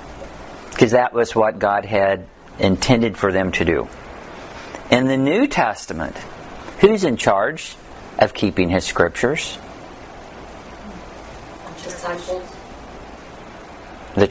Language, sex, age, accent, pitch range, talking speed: English, male, 50-69, American, 105-140 Hz, 95 wpm